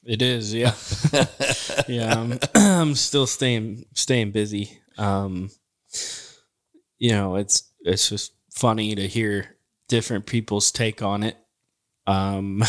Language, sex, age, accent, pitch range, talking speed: English, male, 20-39, American, 100-120 Hz, 120 wpm